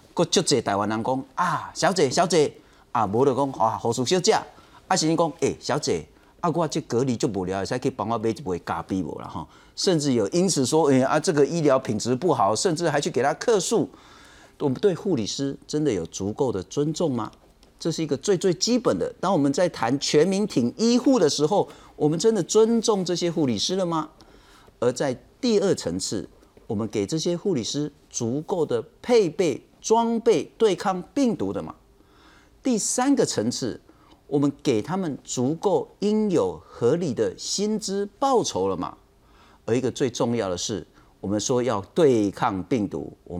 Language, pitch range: Chinese, 125-200 Hz